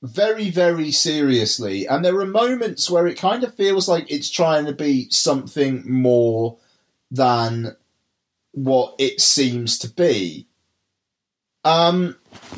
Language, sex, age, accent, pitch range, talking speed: English, male, 30-49, British, 130-180 Hz, 125 wpm